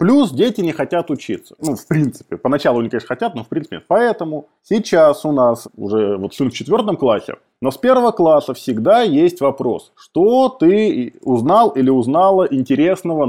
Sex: male